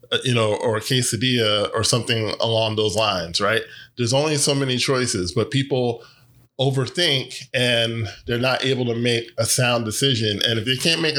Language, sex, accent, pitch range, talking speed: English, male, American, 115-140 Hz, 175 wpm